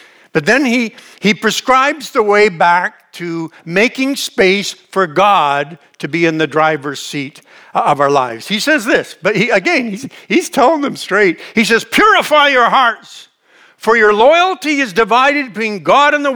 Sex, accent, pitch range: male, American, 190-300 Hz